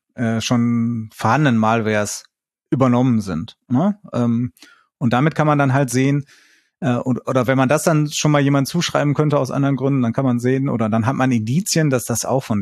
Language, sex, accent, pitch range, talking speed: German, male, German, 115-140 Hz, 185 wpm